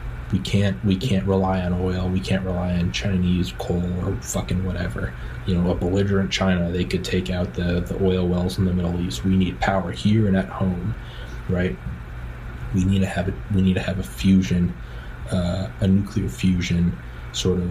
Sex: male